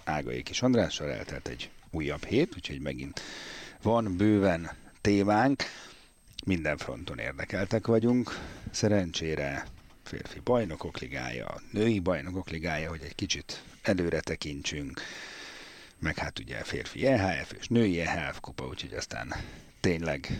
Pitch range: 80-105 Hz